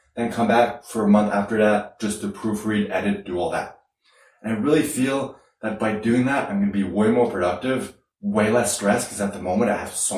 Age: 20-39